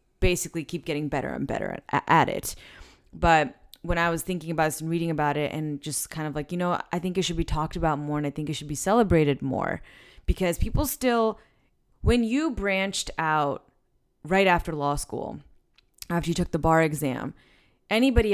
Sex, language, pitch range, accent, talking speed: female, English, 150-185 Hz, American, 195 wpm